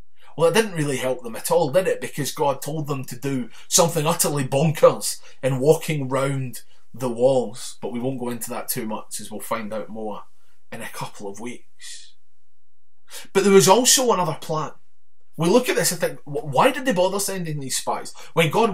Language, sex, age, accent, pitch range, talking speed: English, male, 20-39, British, 135-175 Hz, 200 wpm